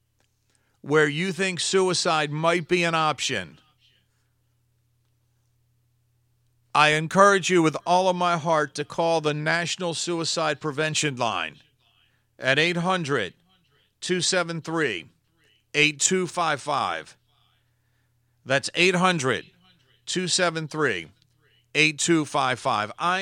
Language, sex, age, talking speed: English, male, 50-69, 70 wpm